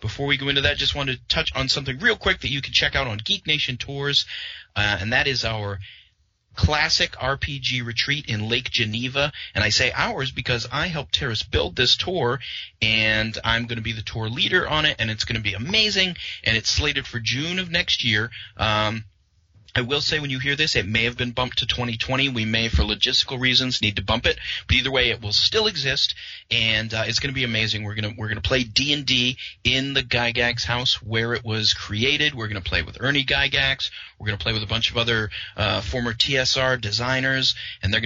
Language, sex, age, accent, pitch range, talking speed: English, male, 30-49, American, 110-130 Hz, 225 wpm